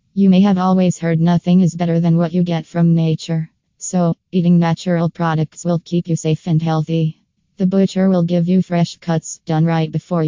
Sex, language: female, English